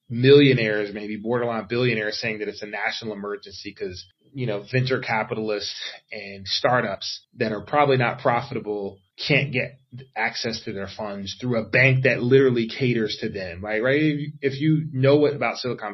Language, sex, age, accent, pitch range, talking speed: English, male, 20-39, American, 105-135 Hz, 165 wpm